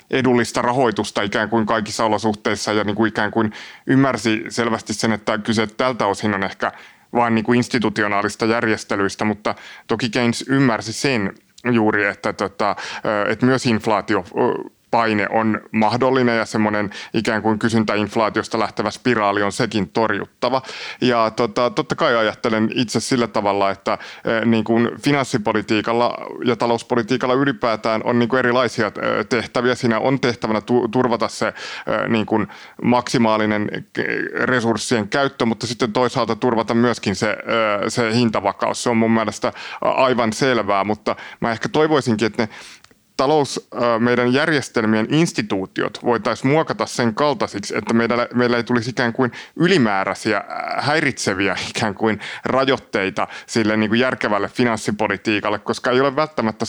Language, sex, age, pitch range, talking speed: Finnish, male, 20-39, 110-125 Hz, 130 wpm